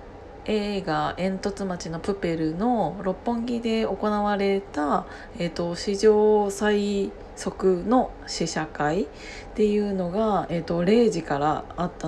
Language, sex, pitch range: Japanese, female, 170-210 Hz